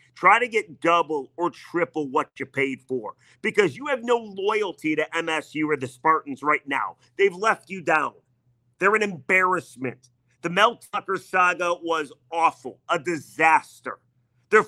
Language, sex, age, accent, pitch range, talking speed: English, male, 40-59, American, 130-180 Hz, 155 wpm